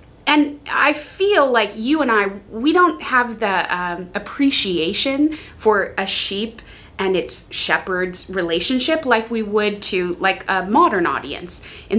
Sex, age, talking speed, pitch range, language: female, 30-49, 145 wpm, 195-275 Hz, English